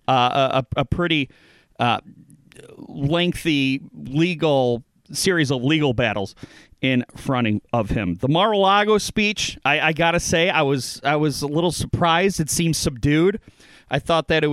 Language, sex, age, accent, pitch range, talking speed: English, male, 40-59, American, 125-165 Hz, 145 wpm